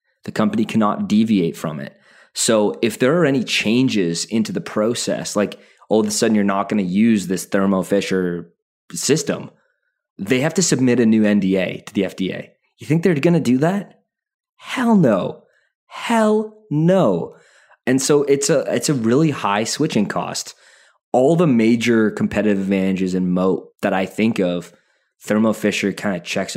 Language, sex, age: English, male, 20-39